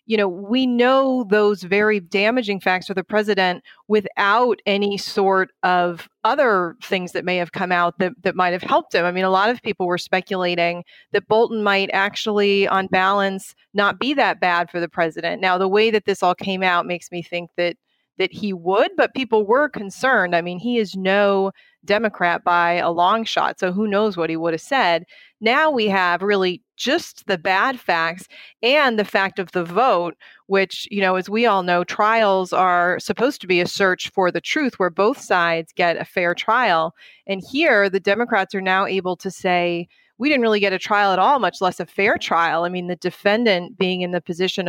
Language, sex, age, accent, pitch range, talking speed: English, female, 30-49, American, 180-210 Hz, 205 wpm